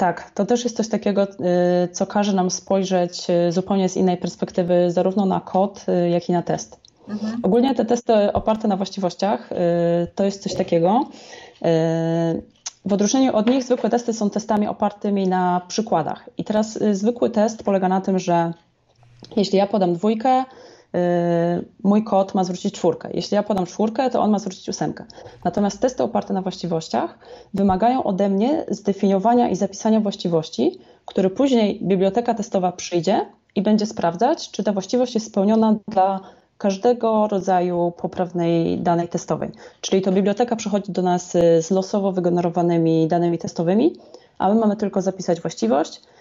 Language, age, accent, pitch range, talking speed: Polish, 20-39, native, 180-215 Hz, 150 wpm